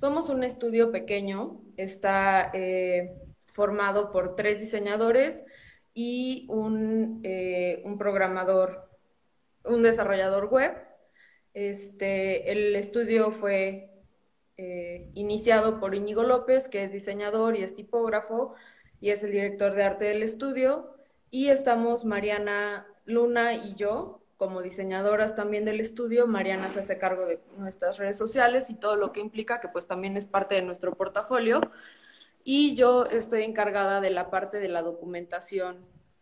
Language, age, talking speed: Spanish, 20-39, 135 wpm